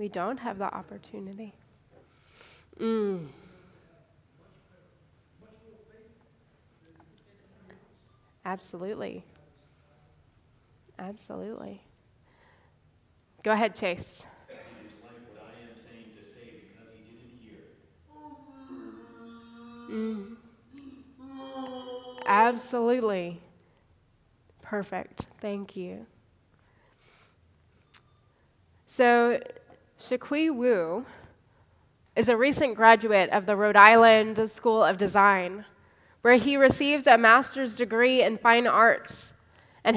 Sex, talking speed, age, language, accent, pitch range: female, 60 wpm, 20-39, English, American, 195-250 Hz